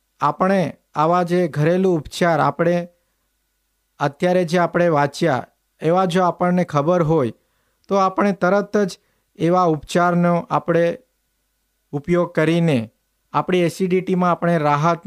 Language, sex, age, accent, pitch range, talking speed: Gujarati, male, 50-69, native, 155-180 Hz, 110 wpm